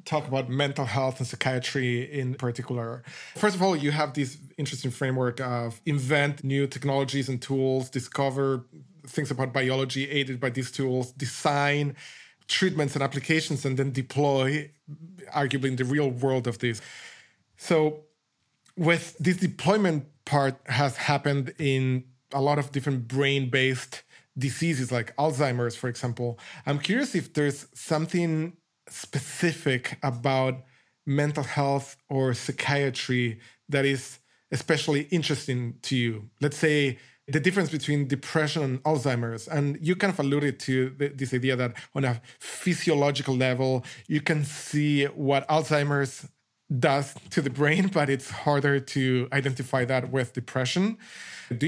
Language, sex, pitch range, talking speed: English, male, 130-150 Hz, 135 wpm